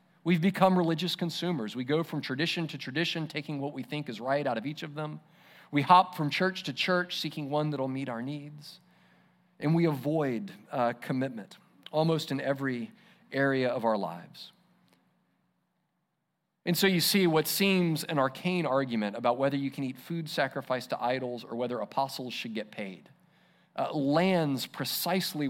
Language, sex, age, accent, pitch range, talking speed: English, male, 40-59, American, 135-180 Hz, 170 wpm